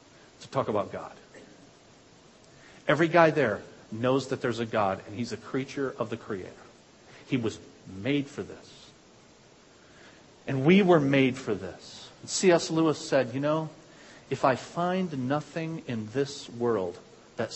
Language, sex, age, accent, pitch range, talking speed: English, male, 50-69, American, 130-180 Hz, 145 wpm